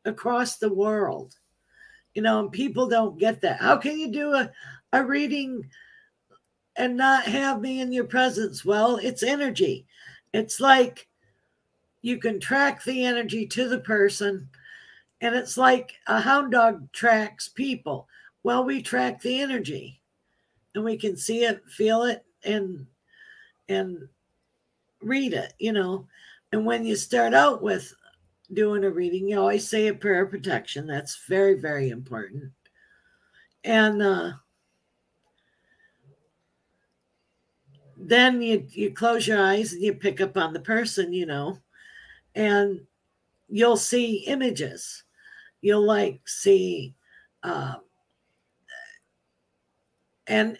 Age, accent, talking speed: 50-69, American, 130 wpm